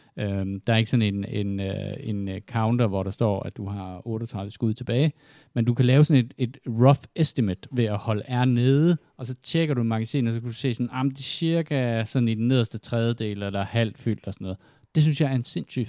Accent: native